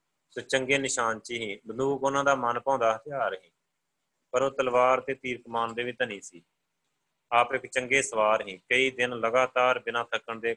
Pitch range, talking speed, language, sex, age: 115-130 Hz, 180 wpm, Punjabi, male, 30-49